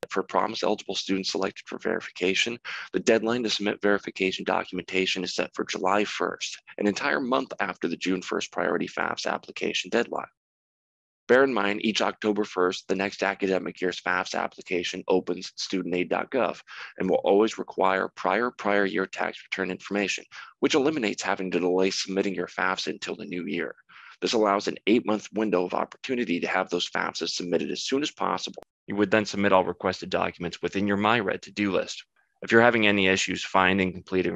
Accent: American